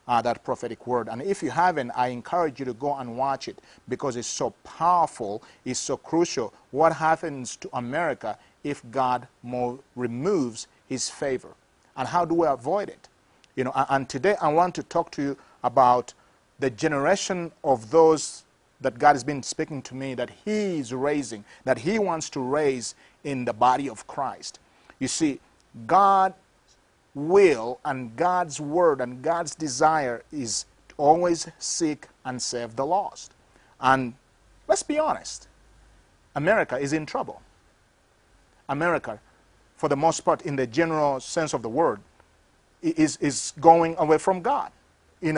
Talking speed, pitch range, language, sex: 160 wpm, 125-165 Hz, English, male